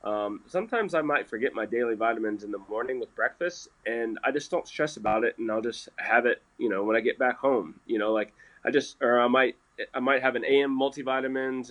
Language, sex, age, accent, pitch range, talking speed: English, male, 20-39, American, 115-140 Hz, 235 wpm